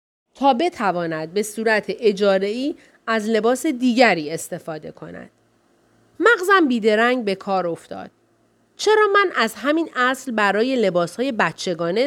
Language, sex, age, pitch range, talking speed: Persian, female, 30-49, 190-265 Hz, 125 wpm